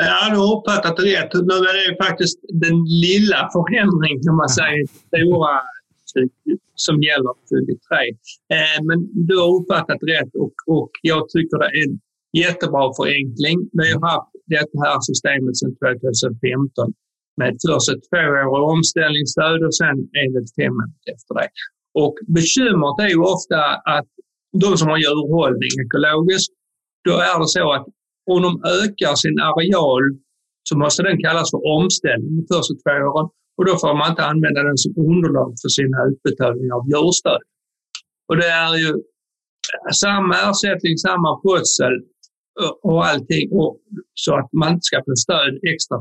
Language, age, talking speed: Swedish, 50-69, 140 wpm